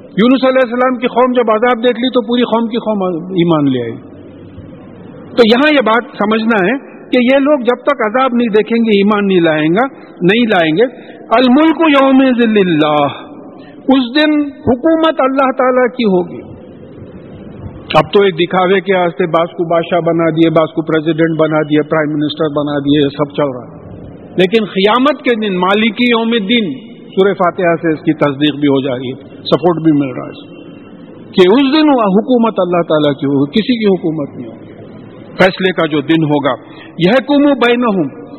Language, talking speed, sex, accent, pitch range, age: English, 130 wpm, male, Indian, 170-250 Hz, 50-69